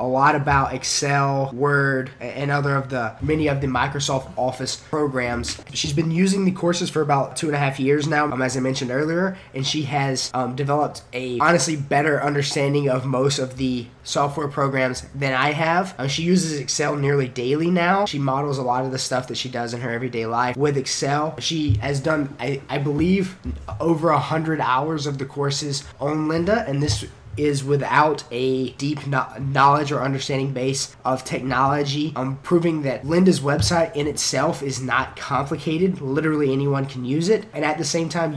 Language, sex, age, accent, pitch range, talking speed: English, male, 20-39, American, 130-150 Hz, 190 wpm